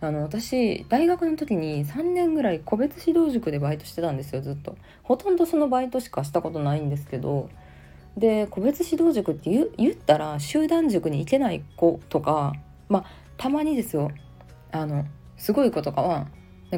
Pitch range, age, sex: 145-240 Hz, 20-39, female